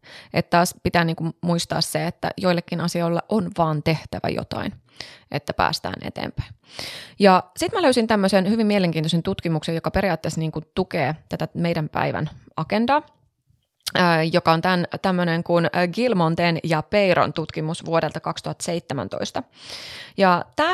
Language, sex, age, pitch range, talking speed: Finnish, female, 20-39, 160-195 Hz, 125 wpm